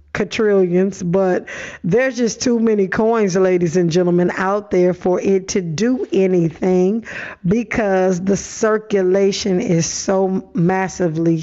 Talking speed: 115 wpm